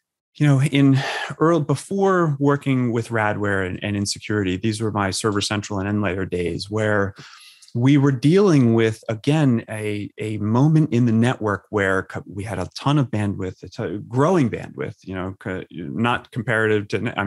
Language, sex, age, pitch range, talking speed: English, male, 30-49, 105-135 Hz, 170 wpm